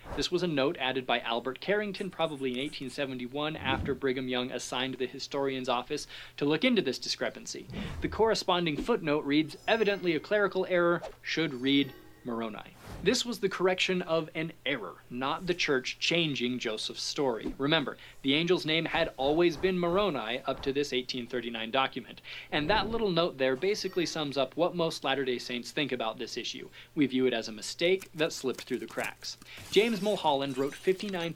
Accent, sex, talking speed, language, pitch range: American, male, 175 wpm, English, 130-175 Hz